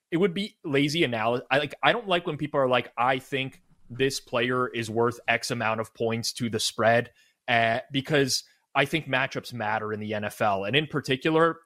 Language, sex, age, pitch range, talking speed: English, male, 20-39, 120-145 Hz, 200 wpm